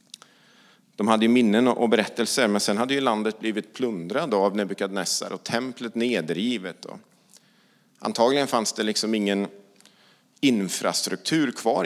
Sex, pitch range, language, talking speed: male, 105-140 Hz, English, 125 wpm